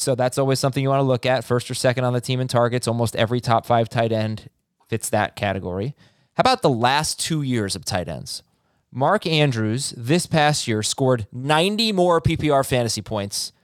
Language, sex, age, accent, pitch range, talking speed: English, male, 20-39, American, 125-170 Hz, 200 wpm